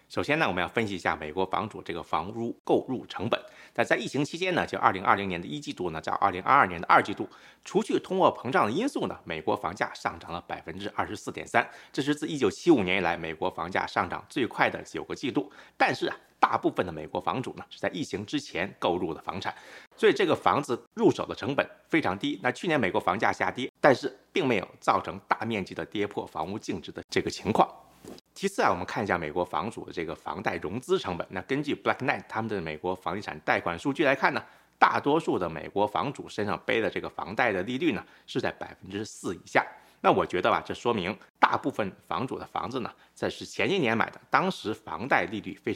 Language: Chinese